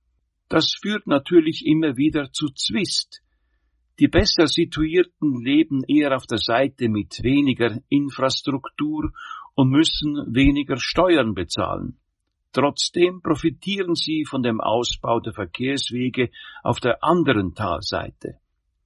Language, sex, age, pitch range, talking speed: German, male, 50-69, 110-155 Hz, 110 wpm